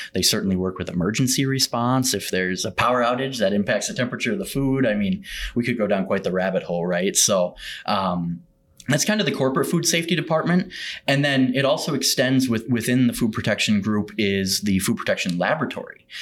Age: 20-39